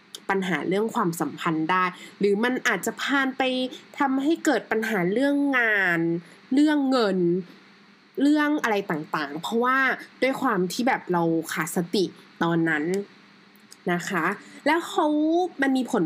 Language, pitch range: Thai, 185-280 Hz